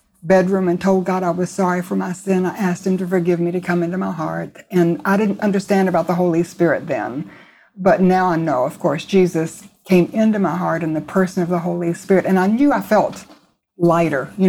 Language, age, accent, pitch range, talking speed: English, 60-79, American, 170-195 Hz, 230 wpm